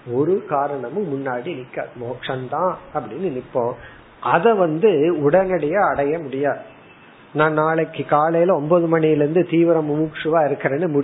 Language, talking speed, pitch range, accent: Tamil, 80 wpm, 135-170 Hz, native